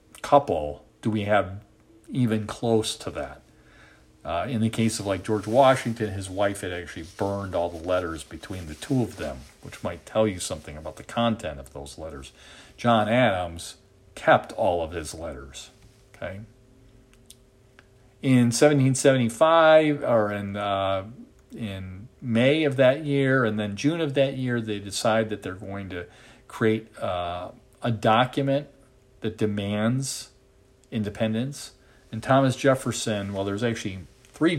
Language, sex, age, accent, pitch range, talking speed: English, male, 50-69, American, 95-125 Hz, 145 wpm